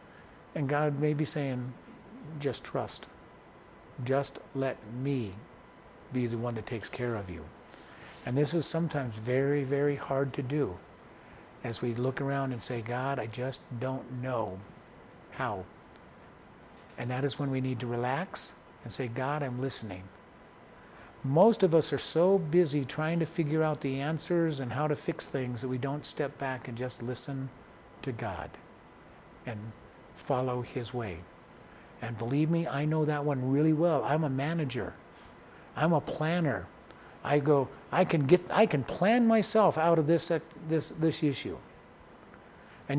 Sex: male